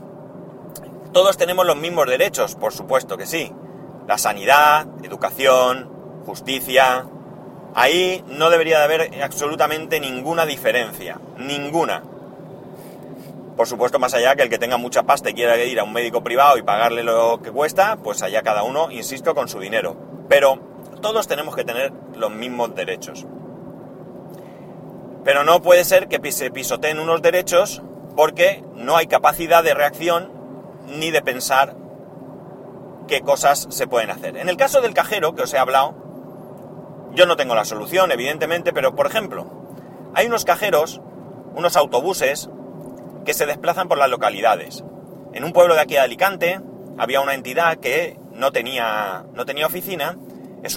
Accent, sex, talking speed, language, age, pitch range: Spanish, male, 150 wpm, Spanish, 30-49, 135-185 Hz